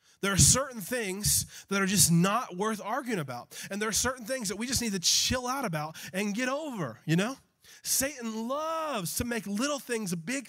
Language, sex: English, male